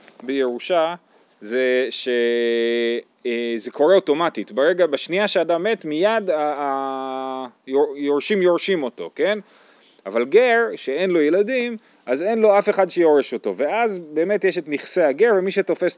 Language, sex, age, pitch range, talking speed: Hebrew, male, 30-49, 135-195 Hz, 130 wpm